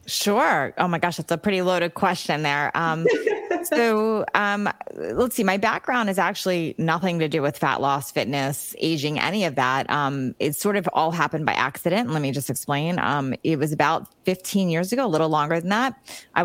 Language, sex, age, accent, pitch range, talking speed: English, female, 30-49, American, 145-185 Hz, 200 wpm